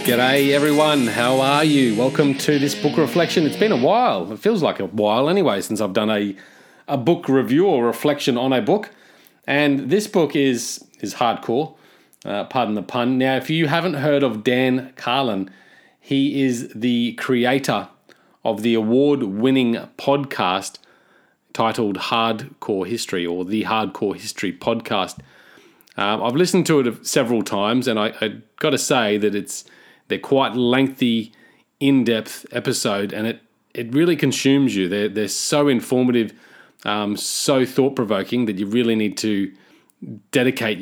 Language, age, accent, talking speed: English, 30-49, Australian, 155 wpm